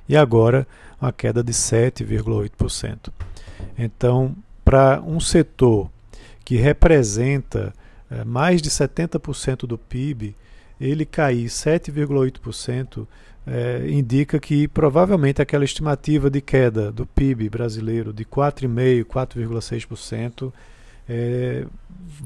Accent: Brazilian